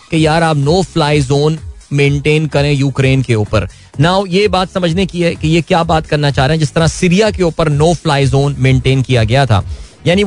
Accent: native